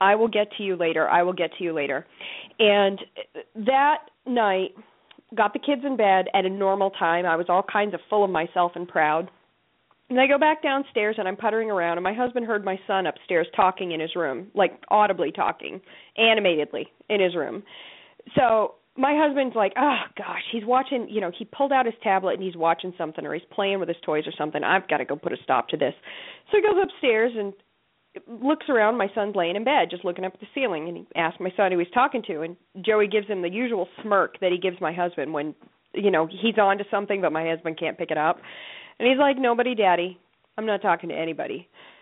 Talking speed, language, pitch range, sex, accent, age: 230 wpm, English, 180-235 Hz, female, American, 40-59